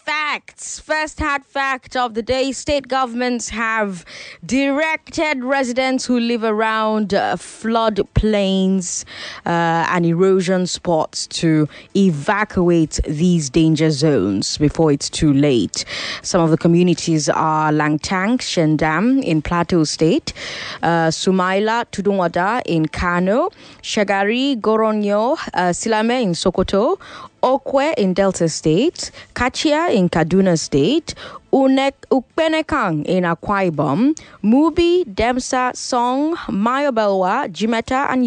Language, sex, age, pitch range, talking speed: English, female, 20-39, 165-245 Hz, 110 wpm